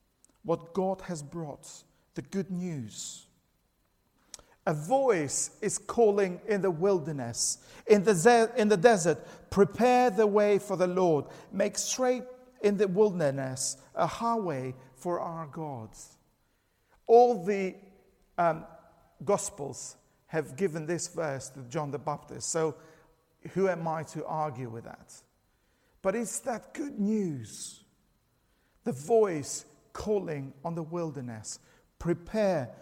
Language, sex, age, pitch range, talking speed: English, male, 50-69, 155-230 Hz, 125 wpm